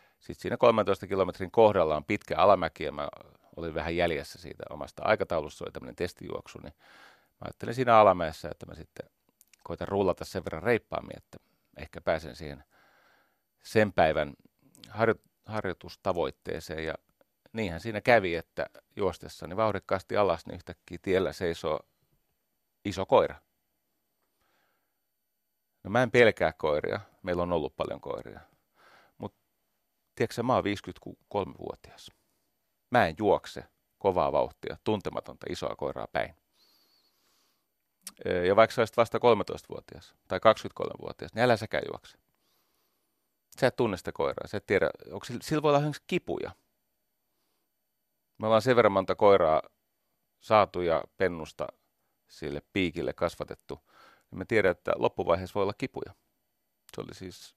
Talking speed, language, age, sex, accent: 125 wpm, Finnish, 40-59, male, native